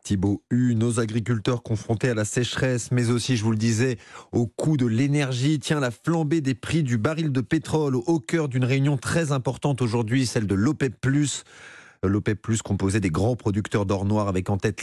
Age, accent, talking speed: 30-49, French, 195 wpm